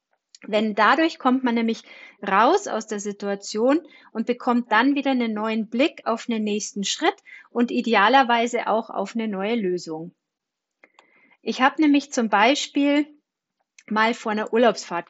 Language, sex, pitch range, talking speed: German, female, 215-265 Hz, 145 wpm